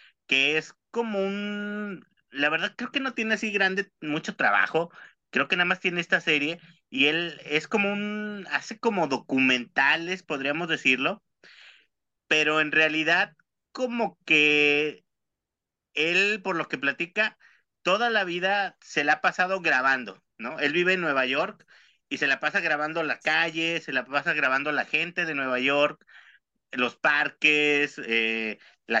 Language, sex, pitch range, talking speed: Spanish, male, 150-185 Hz, 155 wpm